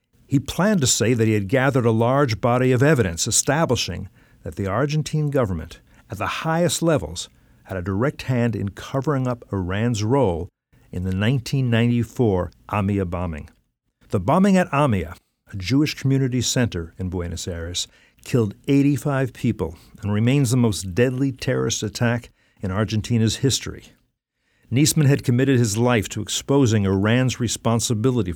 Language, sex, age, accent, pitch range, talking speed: English, male, 50-69, American, 100-135 Hz, 145 wpm